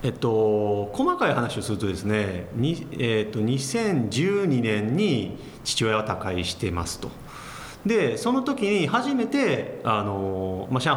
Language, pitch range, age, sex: Japanese, 100-170 Hz, 40-59, male